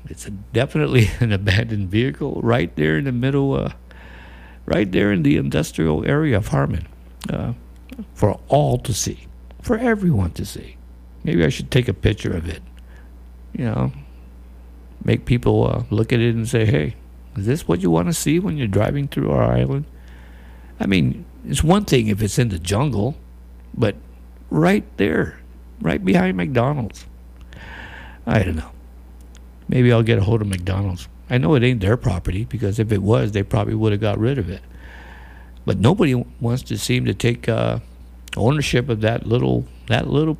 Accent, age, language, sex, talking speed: American, 60-79, English, male, 180 wpm